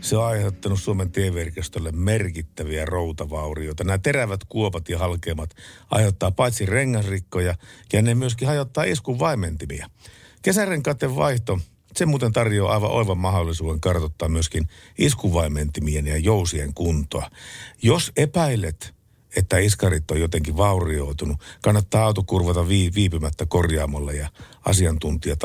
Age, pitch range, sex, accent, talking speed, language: 50-69, 80-105 Hz, male, native, 110 wpm, Finnish